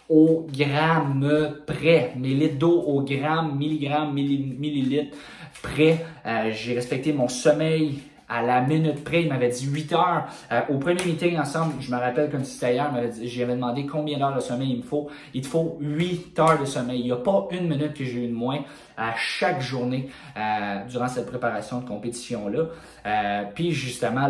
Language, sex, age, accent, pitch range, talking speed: French, male, 20-39, Canadian, 115-150 Hz, 190 wpm